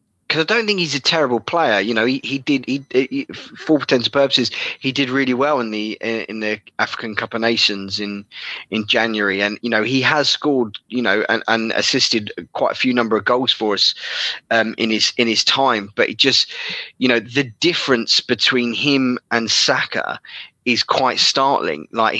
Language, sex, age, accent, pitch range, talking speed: English, male, 20-39, British, 115-140 Hz, 195 wpm